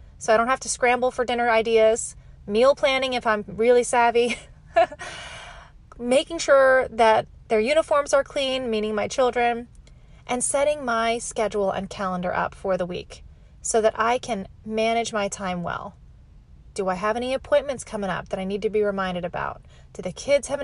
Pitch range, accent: 205-265 Hz, American